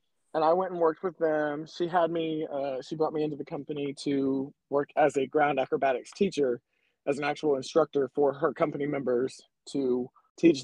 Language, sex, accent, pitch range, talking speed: English, male, American, 140-170 Hz, 190 wpm